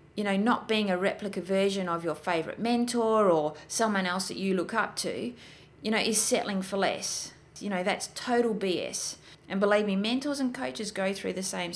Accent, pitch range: Australian, 185-230 Hz